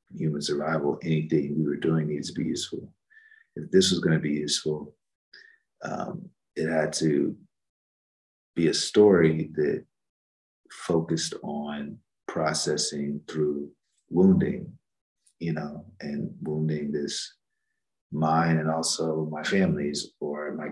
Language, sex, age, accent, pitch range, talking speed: English, male, 40-59, American, 75-80 Hz, 120 wpm